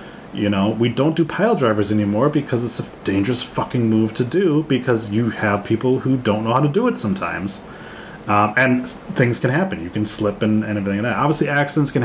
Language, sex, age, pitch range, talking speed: English, male, 30-49, 100-125 Hz, 220 wpm